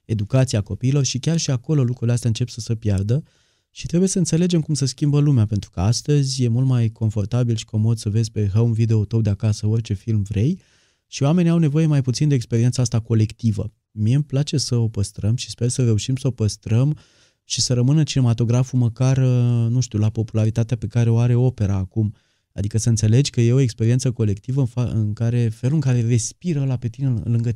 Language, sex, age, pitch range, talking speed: Romanian, male, 20-39, 110-130 Hz, 205 wpm